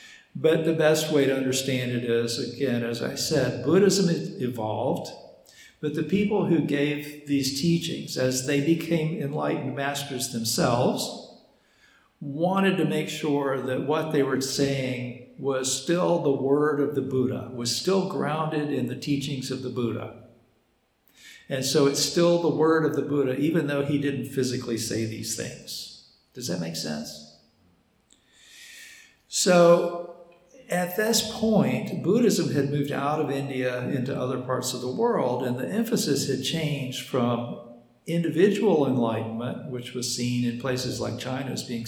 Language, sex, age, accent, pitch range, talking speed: English, male, 60-79, American, 125-160 Hz, 150 wpm